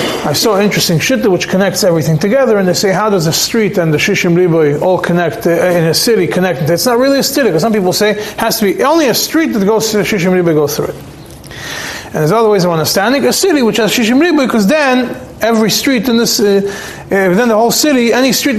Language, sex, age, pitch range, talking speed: English, male, 30-49, 180-235 Hz, 250 wpm